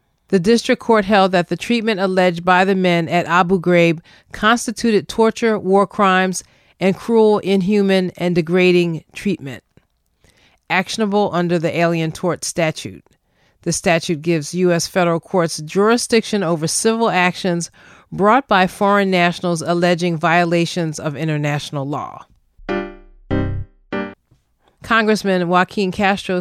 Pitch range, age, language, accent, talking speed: 165-200 Hz, 40-59, English, American, 120 wpm